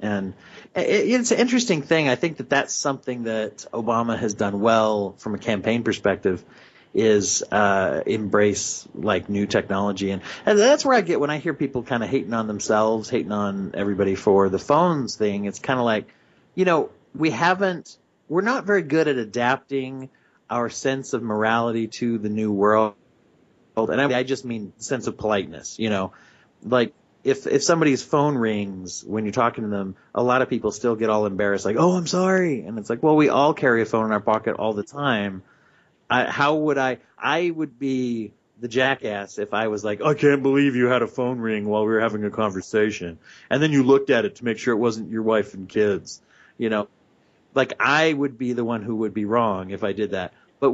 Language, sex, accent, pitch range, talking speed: English, male, American, 105-140 Hz, 205 wpm